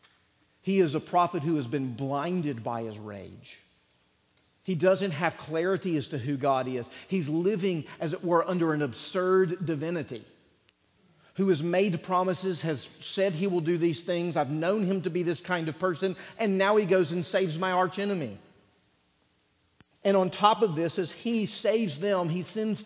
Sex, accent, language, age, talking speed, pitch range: male, American, English, 40-59, 180 wpm, 150-195 Hz